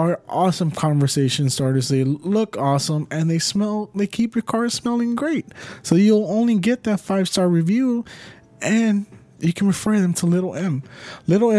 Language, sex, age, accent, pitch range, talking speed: English, male, 20-39, American, 140-185 Hz, 165 wpm